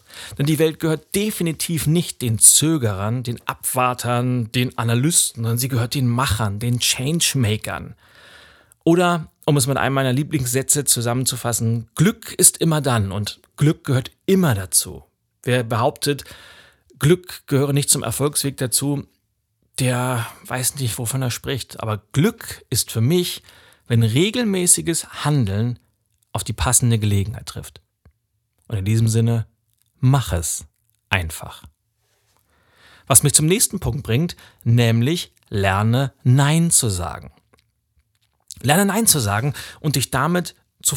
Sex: male